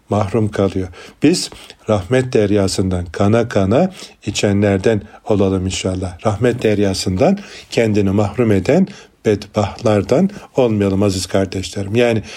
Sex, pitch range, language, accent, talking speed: male, 100-115 Hz, Turkish, native, 95 wpm